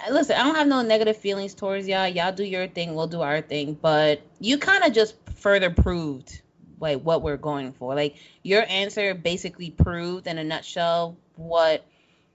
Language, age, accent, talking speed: English, 20-39, American, 185 wpm